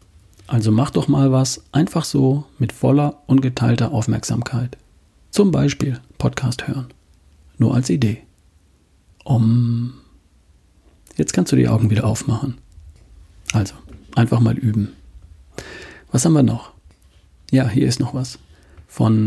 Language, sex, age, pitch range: German, male, 40-59, 95-125 Hz